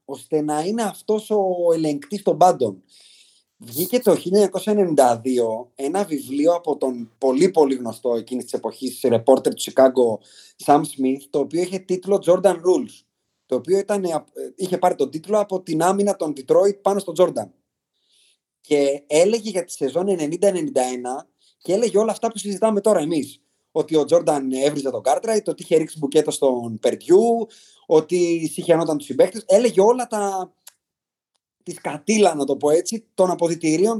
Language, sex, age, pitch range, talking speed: Greek, male, 30-49, 140-200 Hz, 155 wpm